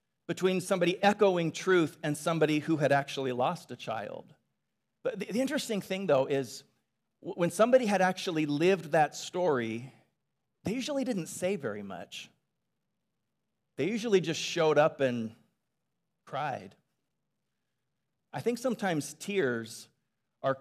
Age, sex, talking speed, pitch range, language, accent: 50-69, male, 130 wpm, 145-190 Hz, English, American